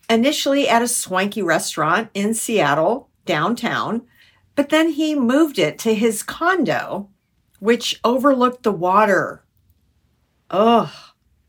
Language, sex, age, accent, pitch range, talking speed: English, female, 50-69, American, 175-265 Hz, 110 wpm